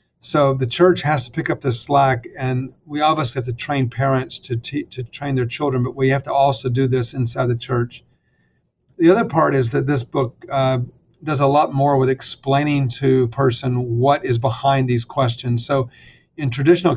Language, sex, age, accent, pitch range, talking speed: English, male, 50-69, American, 125-140 Hz, 200 wpm